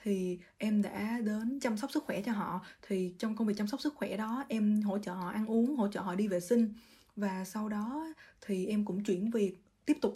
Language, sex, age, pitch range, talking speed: Vietnamese, female, 20-39, 195-245 Hz, 240 wpm